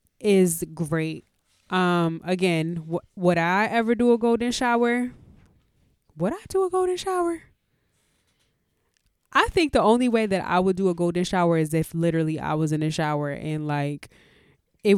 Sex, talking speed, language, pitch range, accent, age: female, 160 wpm, English, 155-195 Hz, American, 20-39